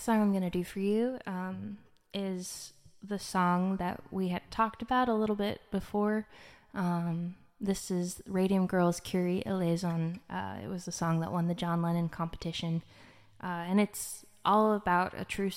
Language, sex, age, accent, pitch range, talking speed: English, female, 10-29, American, 170-195 Hz, 170 wpm